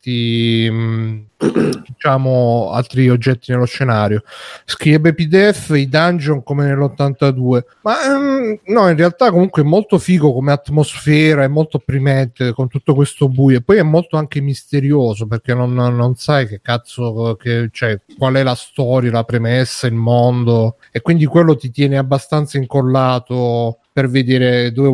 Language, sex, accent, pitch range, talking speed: Italian, male, native, 120-150 Hz, 140 wpm